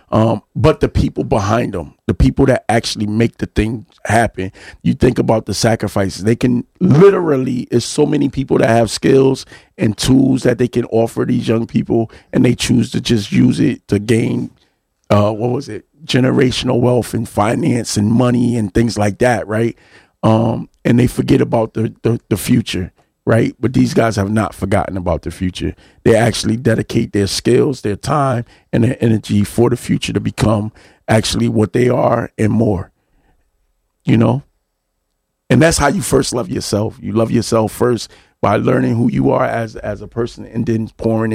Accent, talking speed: American, 185 wpm